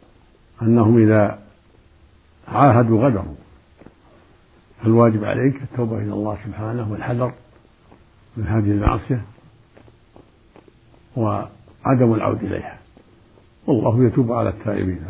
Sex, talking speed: male, 85 wpm